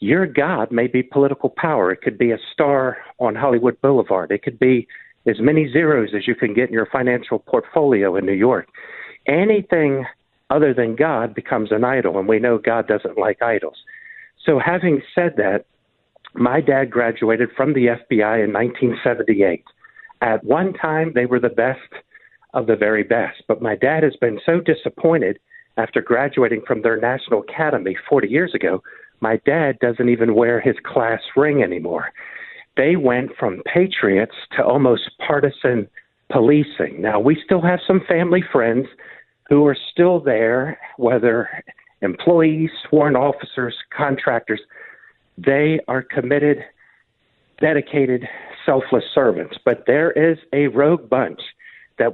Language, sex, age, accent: English, male, 50-69, American